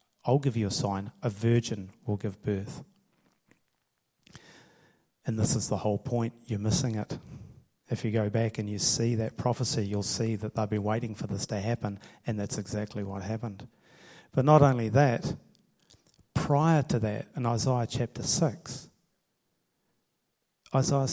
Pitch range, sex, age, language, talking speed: 110-140 Hz, male, 30-49, English, 155 wpm